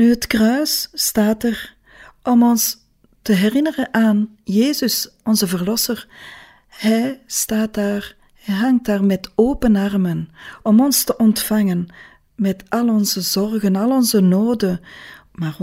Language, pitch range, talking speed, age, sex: Dutch, 180-220 Hz, 130 wpm, 40-59, female